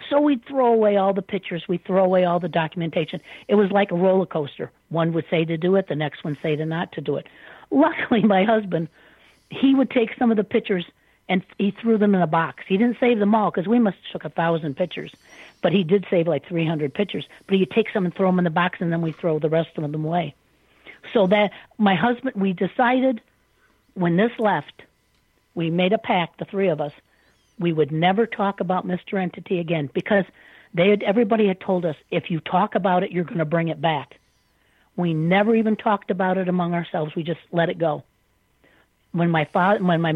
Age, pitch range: 50-69, 165-200 Hz